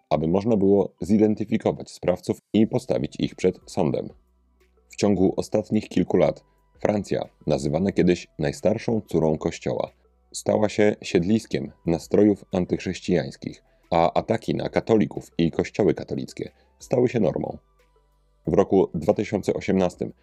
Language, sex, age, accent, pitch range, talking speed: Polish, male, 40-59, native, 85-110 Hz, 115 wpm